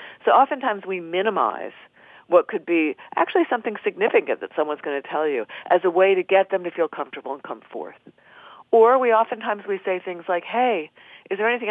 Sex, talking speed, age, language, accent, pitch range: female, 200 wpm, 50-69, English, American, 170-265 Hz